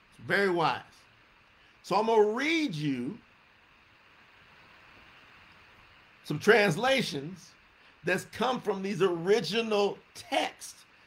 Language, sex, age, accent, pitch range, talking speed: English, male, 50-69, American, 160-235 Hz, 85 wpm